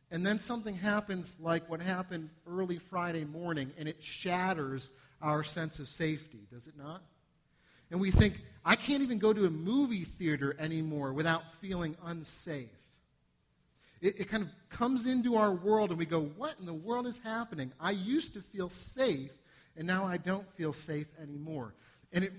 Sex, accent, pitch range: male, American, 155-205 Hz